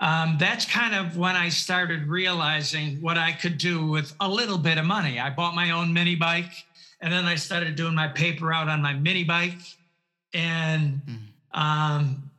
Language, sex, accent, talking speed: English, male, American, 185 wpm